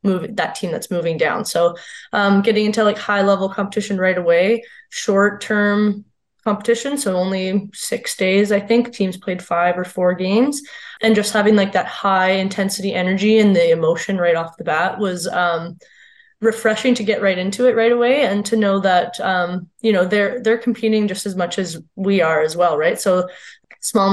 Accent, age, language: American, 20-39, English